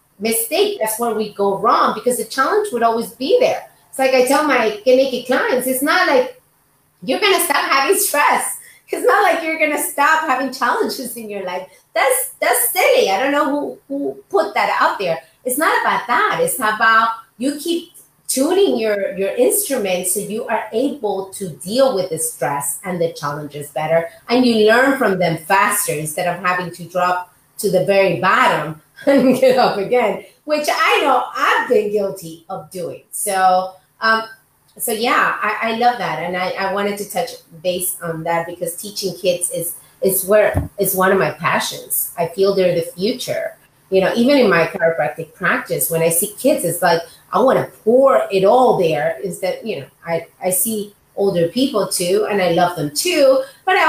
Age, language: 30-49, English